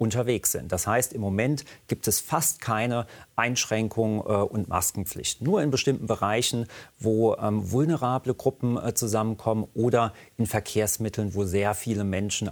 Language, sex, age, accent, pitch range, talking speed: German, male, 40-59, German, 110-140 Hz, 135 wpm